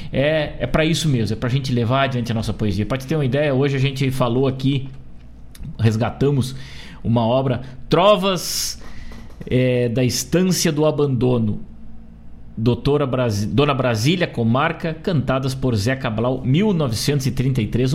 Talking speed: 140 wpm